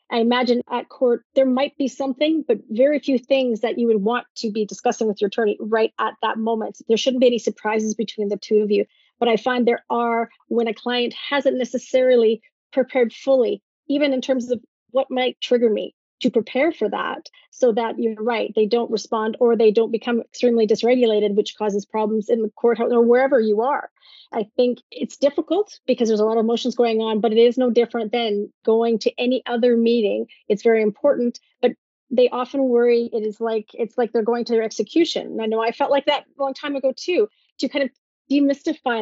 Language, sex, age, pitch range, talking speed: English, female, 30-49, 220-255 Hz, 210 wpm